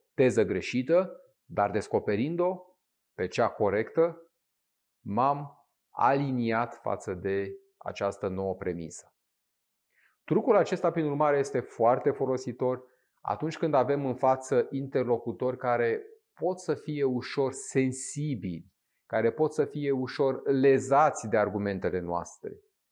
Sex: male